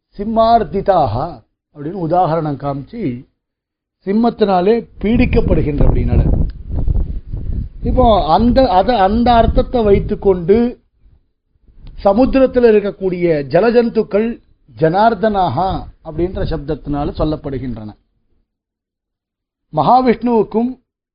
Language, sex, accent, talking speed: Tamil, male, native, 65 wpm